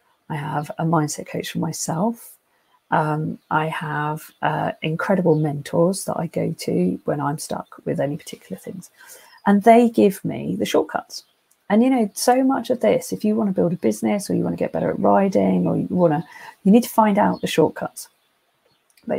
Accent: British